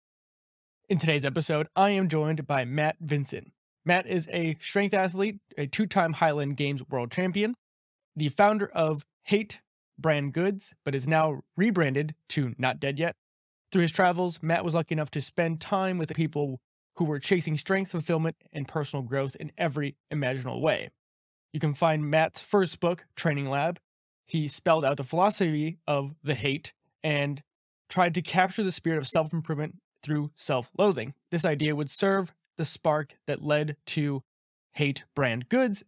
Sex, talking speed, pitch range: male, 160 wpm, 145-170 Hz